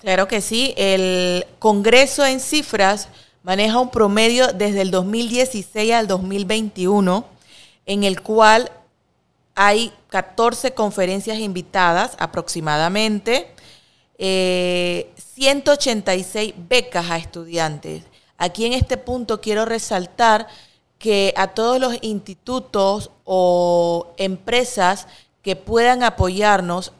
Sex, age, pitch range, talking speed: female, 30-49, 185-220 Hz, 100 wpm